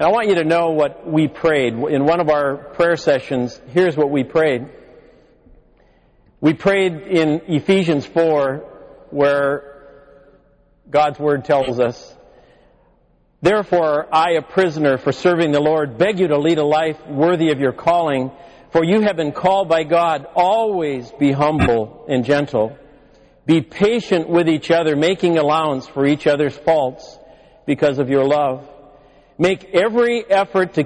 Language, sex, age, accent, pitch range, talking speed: English, male, 50-69, American, 140-170 Hz, 150 wpm